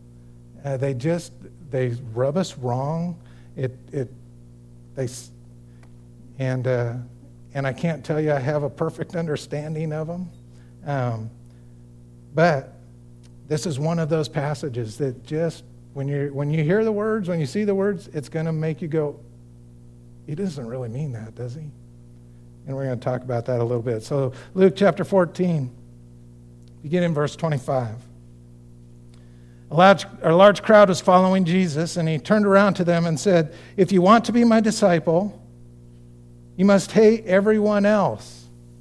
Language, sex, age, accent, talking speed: English, male, 50-69, American, 160 wpm